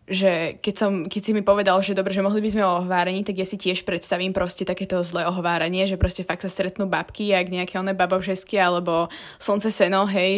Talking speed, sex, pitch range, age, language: 225 wpm, female, 180-210 Hz, 20-39, Slovak